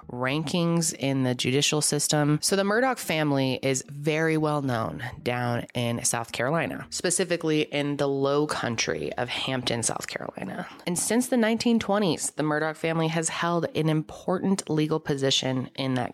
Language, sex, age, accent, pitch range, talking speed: English, female, 20-39, American, 130-175 Hz, 150 wpm